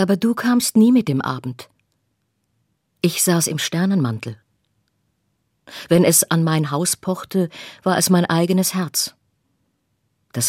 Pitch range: 140-185 Hz